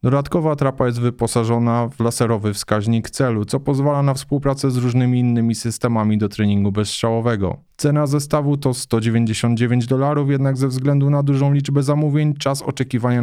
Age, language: 20-39, Polish